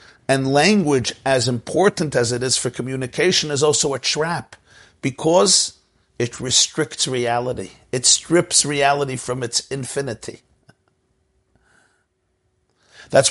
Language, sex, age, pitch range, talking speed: English, male, 50-69, 115-140 Hz, 110 wpm